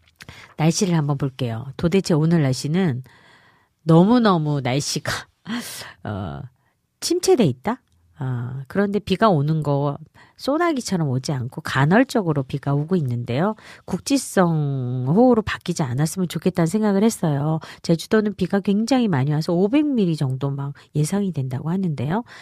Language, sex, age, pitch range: Korean, female, 40-59, 140-205 Hz